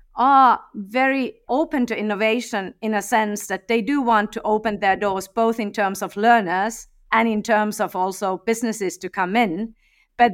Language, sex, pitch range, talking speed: English, female, 180-225 Hz, 180 wpm